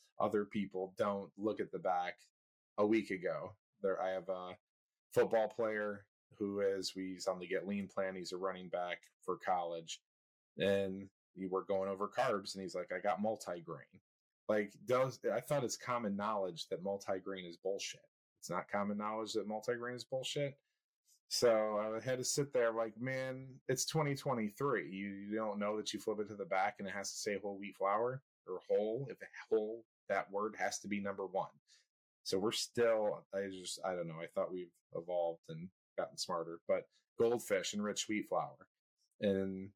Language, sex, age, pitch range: English, male, 30-49, 95-110 Hz